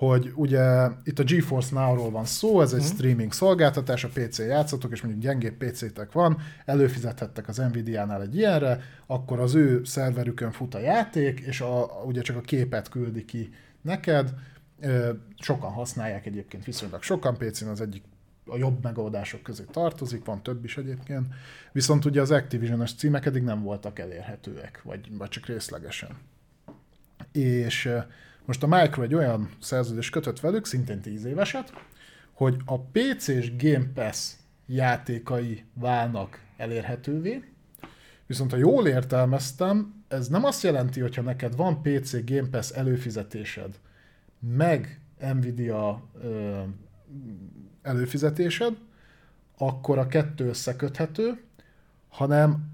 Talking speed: 130 wpm